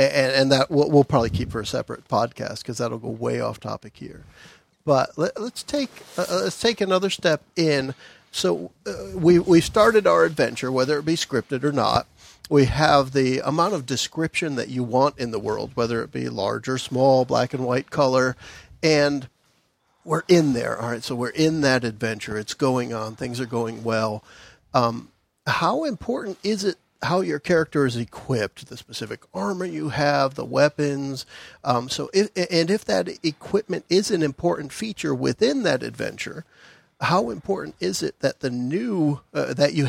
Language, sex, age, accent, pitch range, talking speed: English, male, 50-69, American, 125-165 Hz, 180 wpm